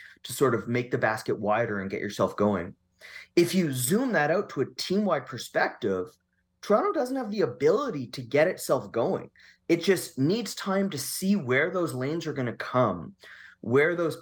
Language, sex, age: English, male, 30-49